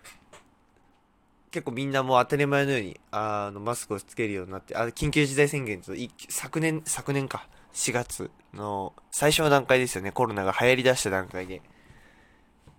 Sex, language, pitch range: male, Japanese, 105-160 Hz